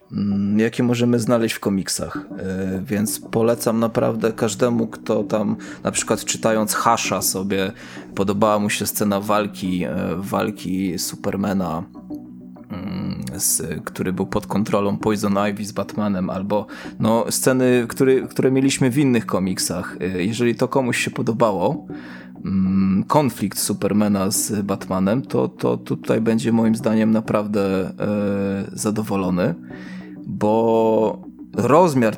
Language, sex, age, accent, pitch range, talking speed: Polish, male, 20-39, native, 95-110 Hz, 110 wpm